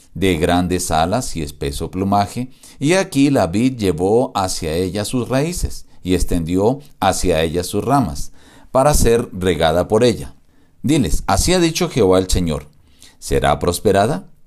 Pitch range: 90-130 Hz